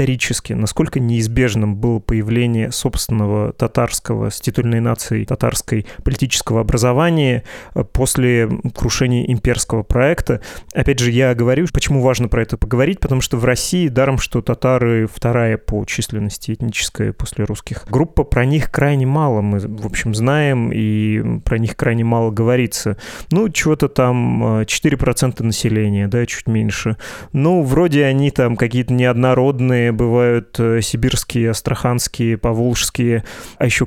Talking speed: 130 wpm